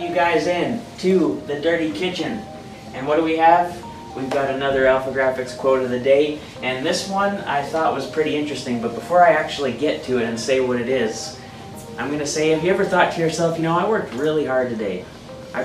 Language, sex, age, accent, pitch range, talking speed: English, male, 20-39, American, 130-175 Hz, 225 wpm